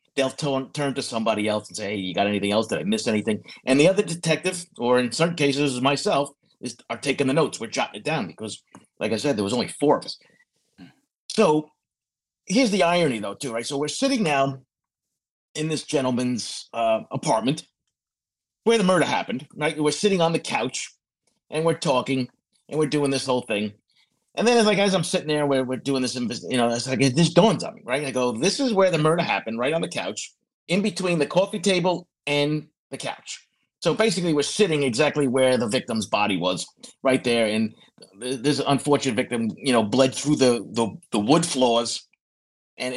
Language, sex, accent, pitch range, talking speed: English, male, American, 125-165 Hz, 205 wpm